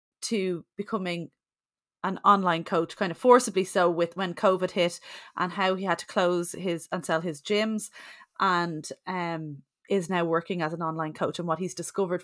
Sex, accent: female, Irish